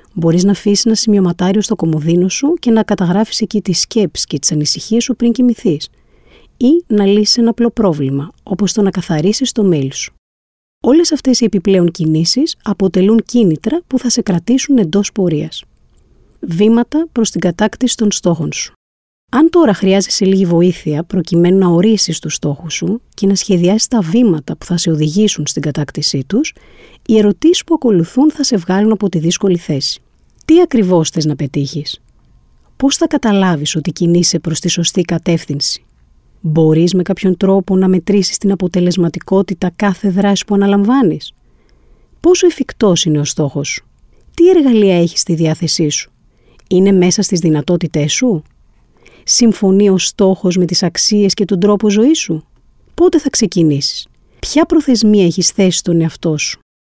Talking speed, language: 160 wpm, Greek